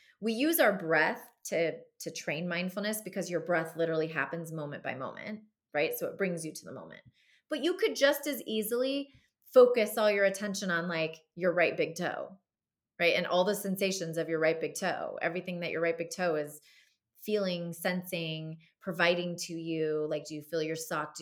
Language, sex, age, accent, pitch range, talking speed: English, female, 30-49, American, 160-200 Hz, 195 wpm